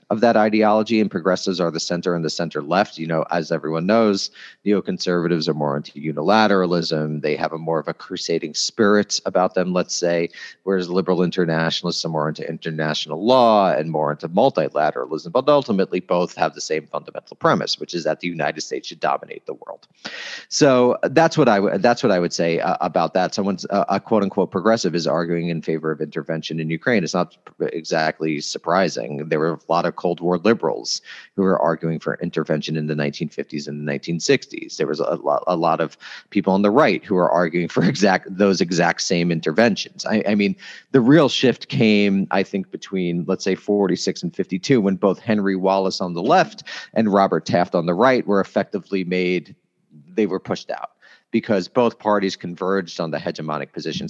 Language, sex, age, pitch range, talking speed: English, male, 30-49, 80-100 Hz, 195 wpm